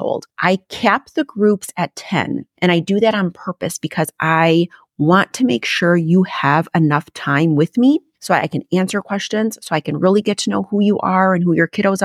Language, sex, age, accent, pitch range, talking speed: English, female, 30-49, American, 155-195 Hz, 215 wpm